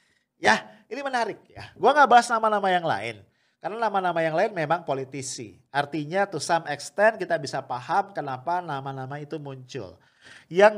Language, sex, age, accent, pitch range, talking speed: English, male, 40-59, Indonesian, 145-210 Hz, 155 wpm